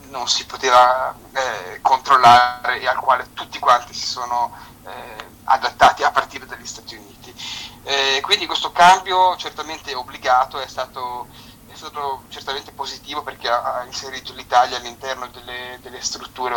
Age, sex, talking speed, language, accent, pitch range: 30-49, male, 140 wpm, Italian, native, 120-140 Hz